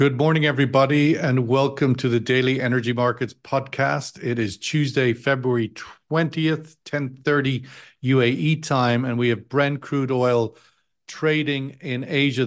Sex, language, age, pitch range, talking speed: male, English, 50-69, 125-150 Hz, 135 wpm